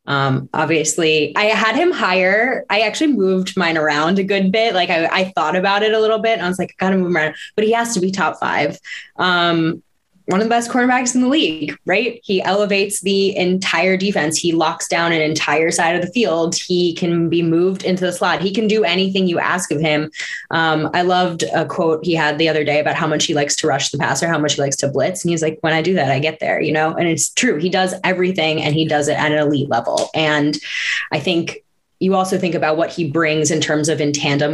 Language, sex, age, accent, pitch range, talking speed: English, female, 10-29, American, 150-190 Hz, 250 wpm